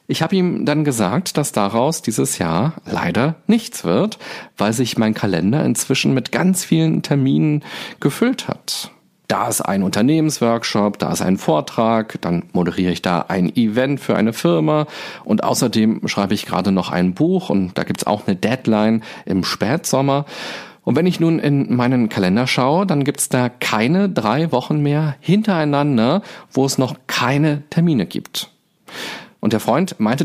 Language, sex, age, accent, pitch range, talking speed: German, male, 40-59, German, 105-160 Hz, 165 wpm